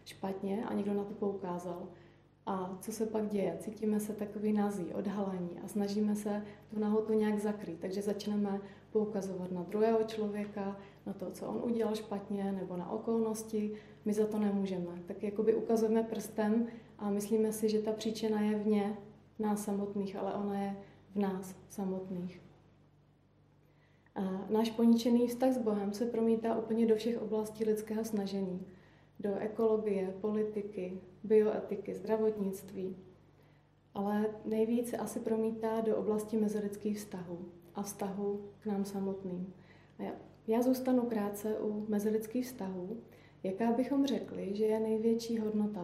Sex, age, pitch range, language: female, 30-49, 185-220 Hz, Czech